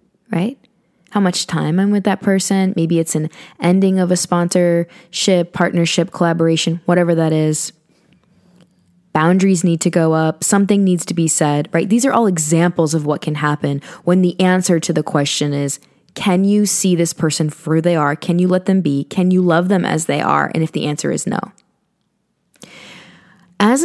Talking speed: 185 wpm